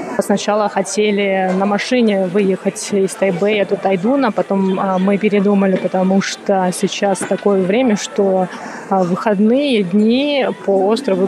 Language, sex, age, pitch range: Russian, female, 20-39, 190-225 Hz